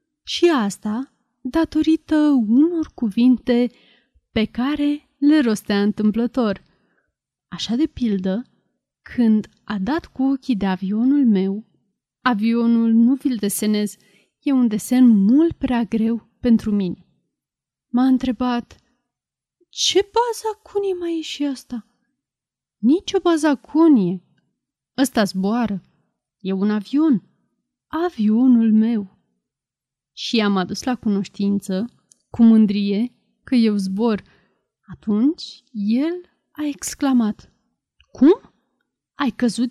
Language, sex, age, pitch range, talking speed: Romanian, female, 30-49, 210-275 Hz, 105 wpm